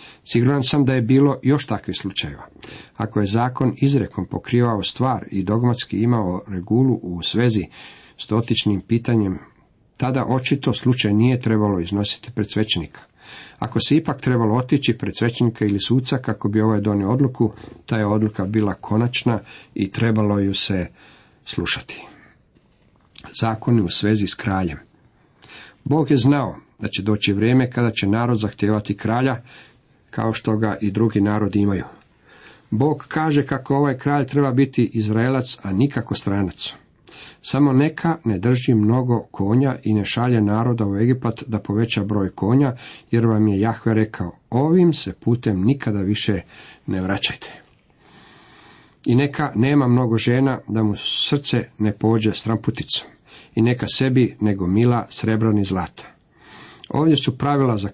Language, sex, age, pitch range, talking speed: Croatian, male, 50-69, 105-130 Hz, 145 wpm